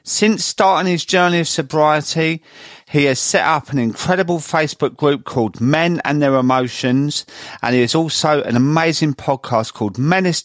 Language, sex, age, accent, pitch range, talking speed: English, male, 40-59, British, 120-165 Hz, 160 wpm